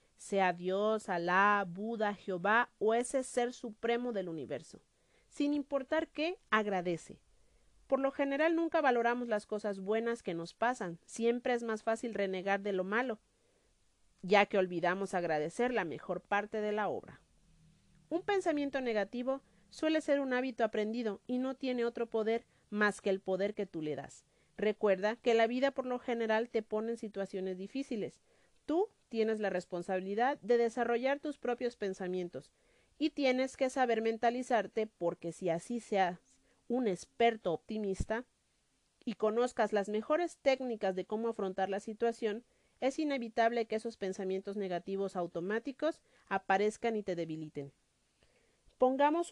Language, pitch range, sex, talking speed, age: Spanish, 195-245 Hz, female, 145 wpm, 40-59